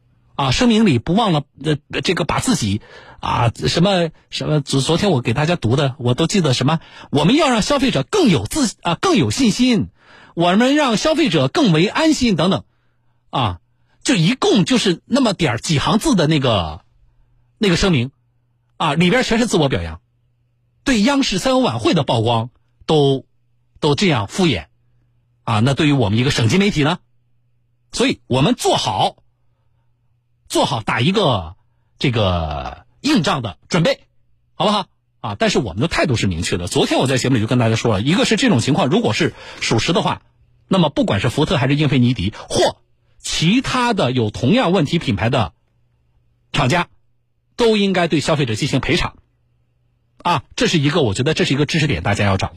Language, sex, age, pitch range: Chinese, male, 50-69, 120-170 Hz